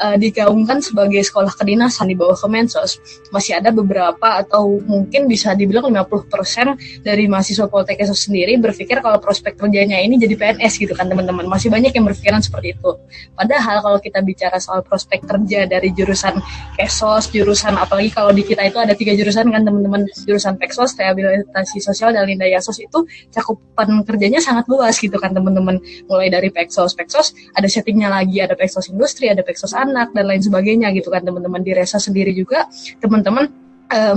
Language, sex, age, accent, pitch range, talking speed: Indonesian, female, 20-39, native, 190-220 Hz, 165 wpm